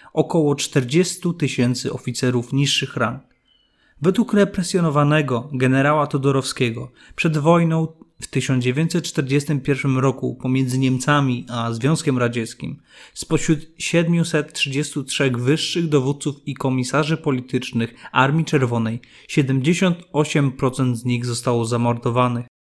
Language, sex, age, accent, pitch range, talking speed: Polish, male, 30-49, native, 125-160 Hz, 90 wpm